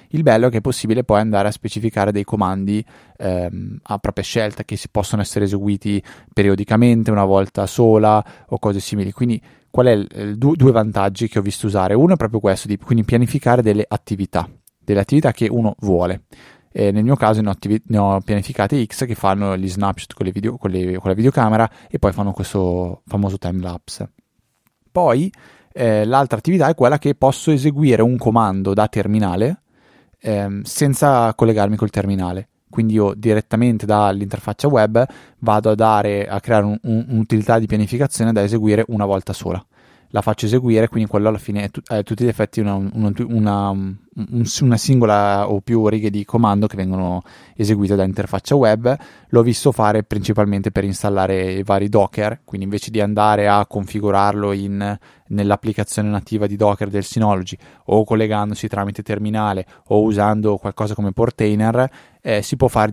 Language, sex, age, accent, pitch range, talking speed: Italian, male, 20-39, native, 100-115 Hz, 170 wpm